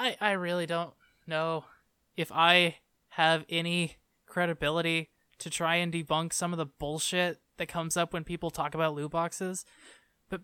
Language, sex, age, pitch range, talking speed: English, male, 20-39, 160-190 Hz, 155 wpm